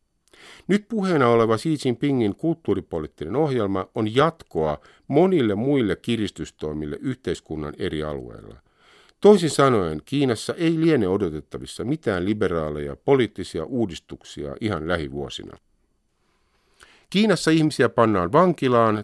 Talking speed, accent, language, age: 100 wpm, native, Finnish, 50-69